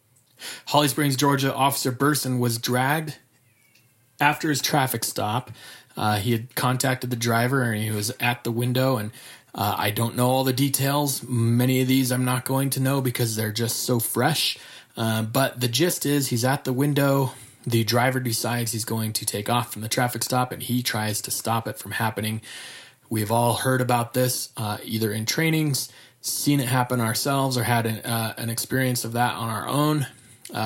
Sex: male